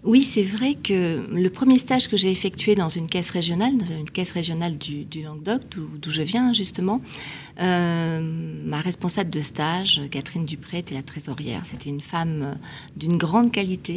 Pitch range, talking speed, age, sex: 155-195 Hz, 175 wpm, 40-59, female